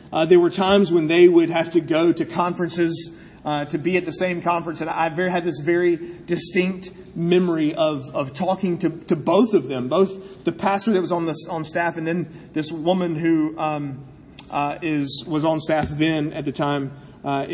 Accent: American